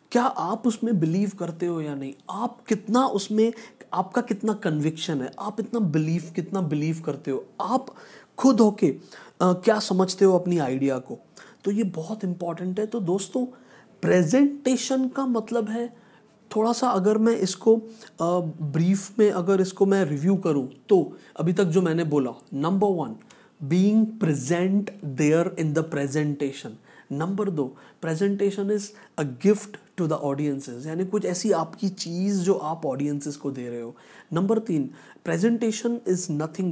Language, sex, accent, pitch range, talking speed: Hindi, male, native, 155-210 Hz, 155 wpm